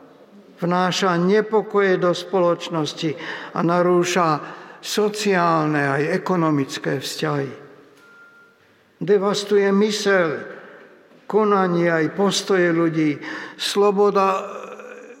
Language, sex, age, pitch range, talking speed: Slovak, male, 60-79, 175-210 Hz, 65 wpm